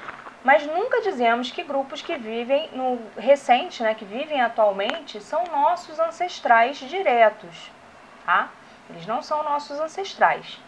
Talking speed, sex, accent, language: 130 wpm, female, Brazilian, Portuguese